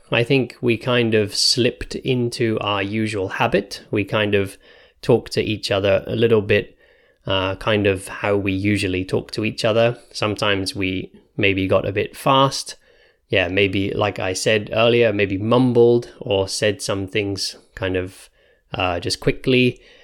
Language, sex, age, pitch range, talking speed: English, male, 20-39, 95-120 Hz, 160 wpm